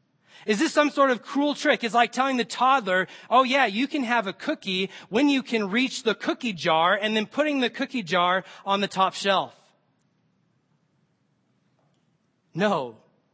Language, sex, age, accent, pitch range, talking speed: English, male, 30-49, American, 190-250 Hz, 165 wpm